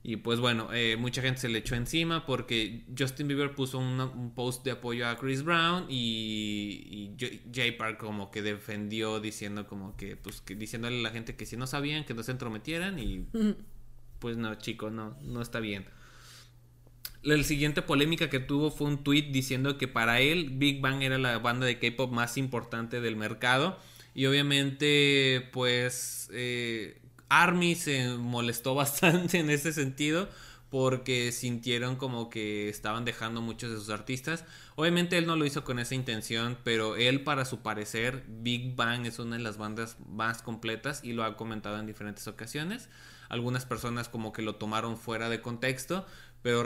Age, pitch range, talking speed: 20-39, 115-135 Hz, 175 wpm